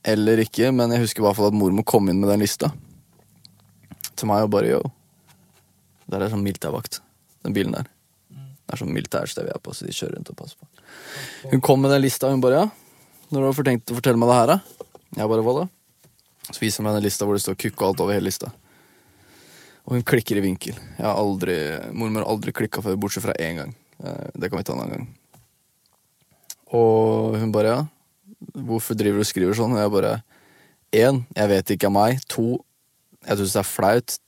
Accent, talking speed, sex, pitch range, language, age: Swedish, 225 wpm, male, 105-130 Hz, English, 20-39